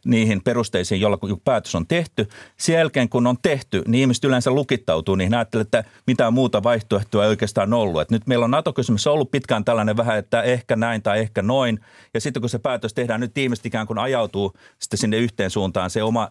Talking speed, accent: 200 wpm, native